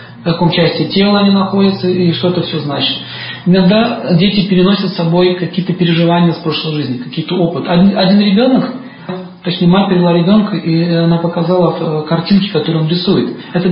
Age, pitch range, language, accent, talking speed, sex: 40-59, 160-200 Hz, Russian, native, 160 wpm, male